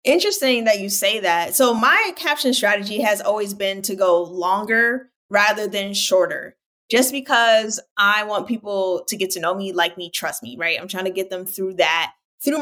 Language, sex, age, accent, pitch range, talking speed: English, female, 20-39, American, 190-240 Hz, 195 wpm